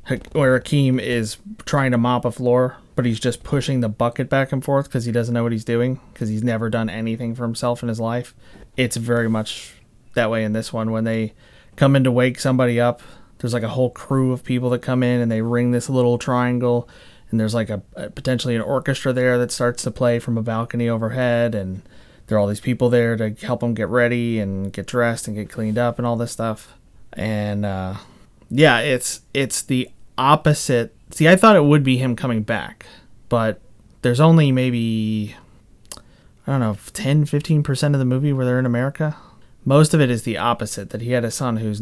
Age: 30-49